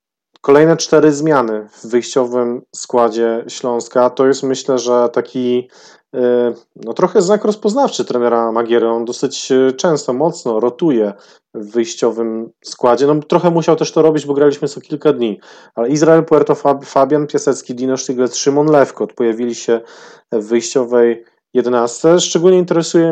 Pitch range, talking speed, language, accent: 115-140 Hz, 140 wpm, Polish, native